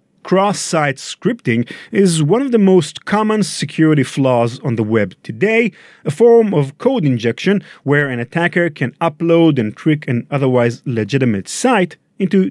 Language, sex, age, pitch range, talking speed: English, male, 40-59, 120-180 Hz, 150 wpm